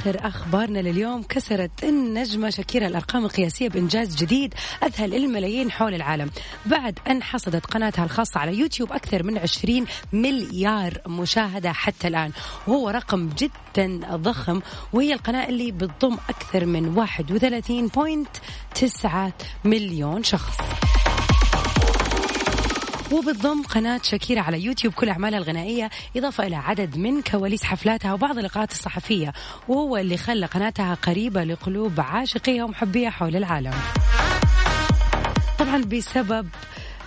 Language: Arabic